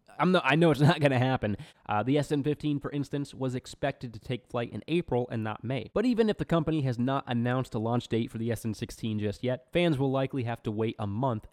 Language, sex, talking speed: English, male, 260 wpm